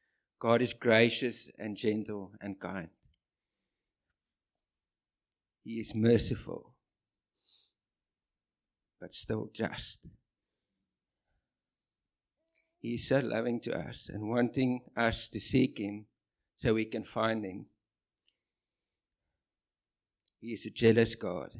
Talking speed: 95 wpm